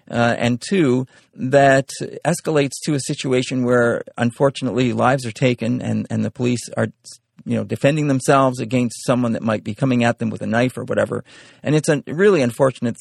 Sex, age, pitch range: male, 40-59, 115-135 Hz